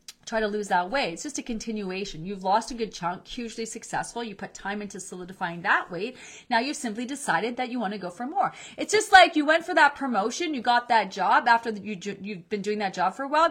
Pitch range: 200-255 Hz